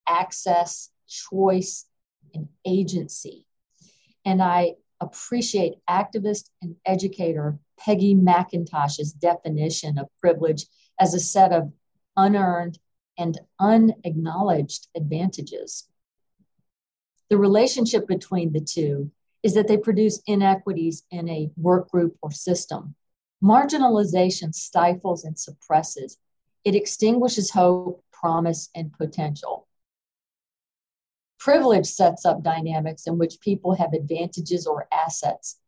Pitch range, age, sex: 160-190 Hz, 50-69, female